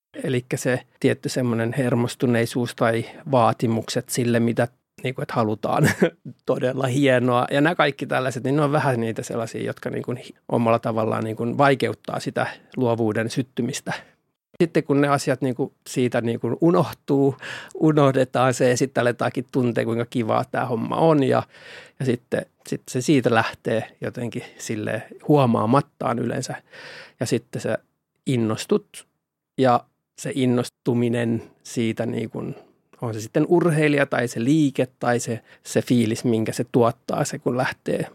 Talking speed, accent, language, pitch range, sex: 145 wpm, native, Finnish, 115-140 Hz, male